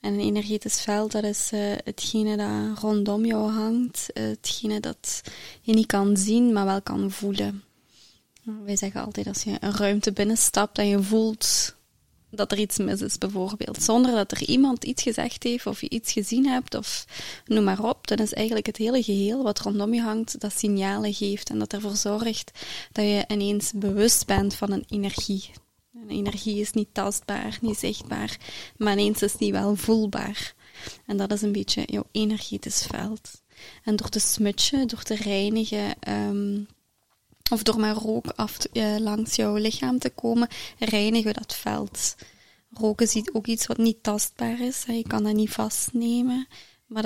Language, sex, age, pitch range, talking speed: Dutch, female, 20-39, 205-225 Hz, 170 wpm